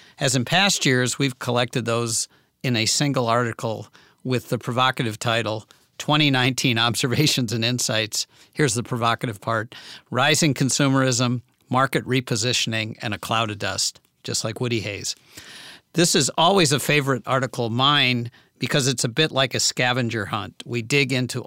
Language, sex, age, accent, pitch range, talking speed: English, male, 50-69, American, 115-135 Hz, 155 wpm